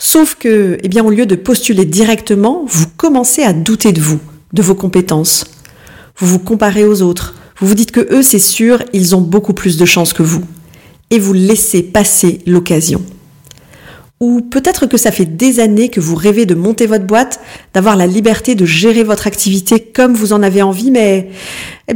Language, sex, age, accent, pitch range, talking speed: French, female, 40-59, French, 175-225 Hz, 195 wpm